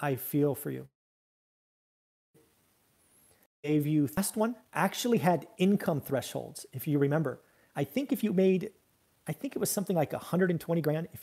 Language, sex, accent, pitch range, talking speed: English, male, American, 140-185 Hz, 155 wpm